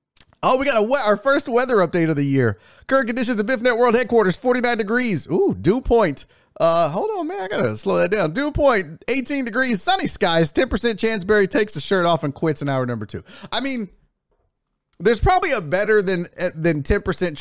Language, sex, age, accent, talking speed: English, male, 30-49, American, 210 wpm